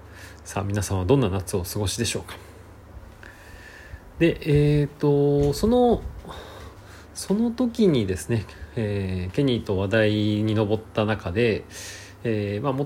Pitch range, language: 95-135 Hz, Japanese